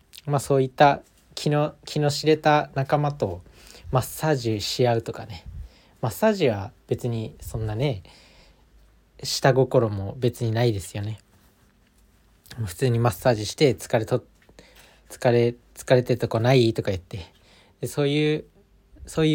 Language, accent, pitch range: Japanese, native, 100-135 Hz